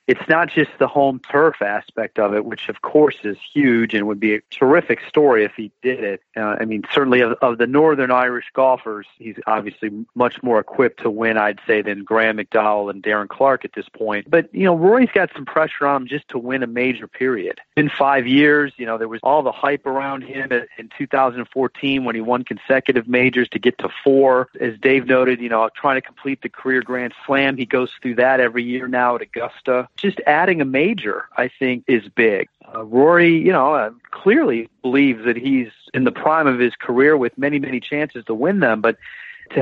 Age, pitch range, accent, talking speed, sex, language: 40-59, 120-140 Hz, American, 215 wpm, male, English